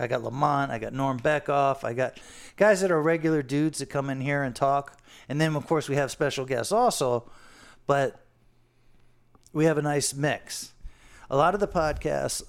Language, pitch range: English, 130-170 Hz